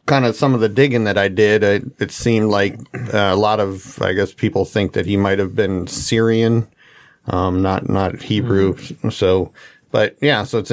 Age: 40-59